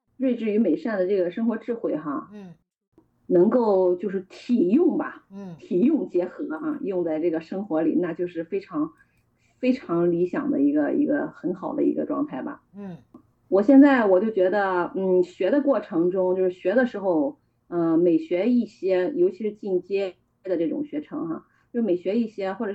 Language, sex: Chinese, female